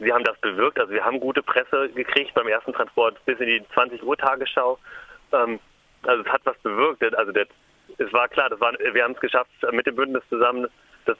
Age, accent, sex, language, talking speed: 30-49, German, male, German, 210 wpm